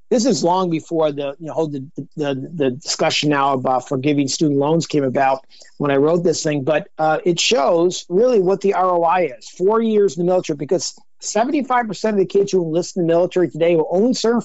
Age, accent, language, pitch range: 50-69, American, English, 150-190 Hz